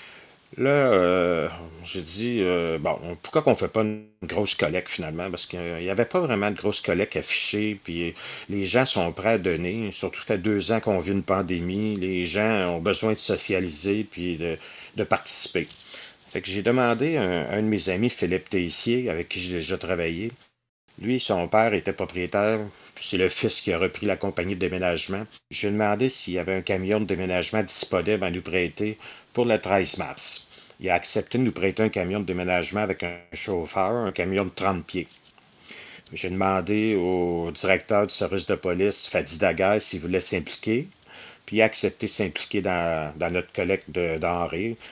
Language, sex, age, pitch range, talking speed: French, male, 50-69, 90-105 Hz, 190 wpm